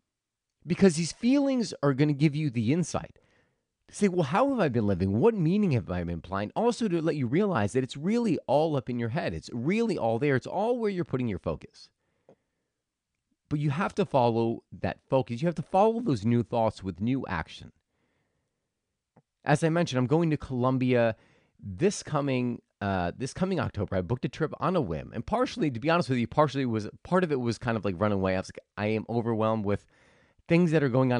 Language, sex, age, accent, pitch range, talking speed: English, male, 30-49, American, 110-170 Hz, 220 wpm